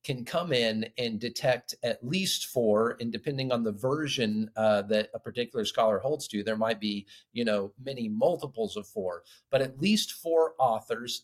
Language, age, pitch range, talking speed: English, 40-59, 110-150 Hz, 180 wpm